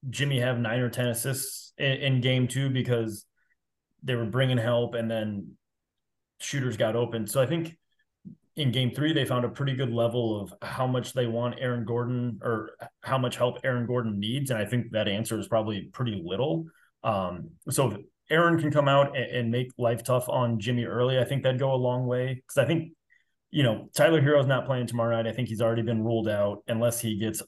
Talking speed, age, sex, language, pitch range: 215 wpm, 30-49, male, English, 115-135 Hz